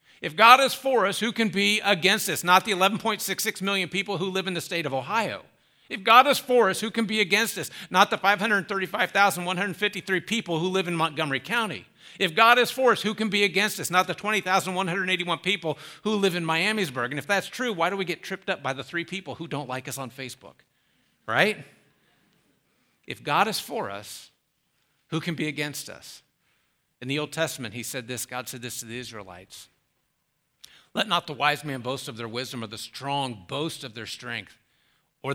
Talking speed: 205 wpm